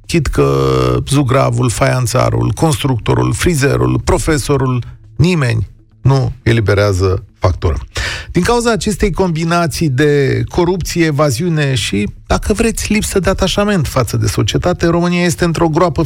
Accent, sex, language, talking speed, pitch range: native, male, Romanian, 115 wpm, 115-170 Hz